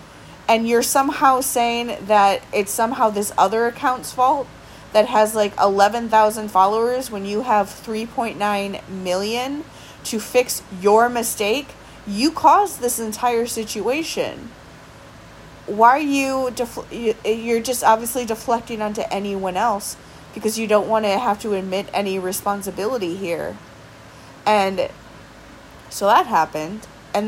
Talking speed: 125 wpm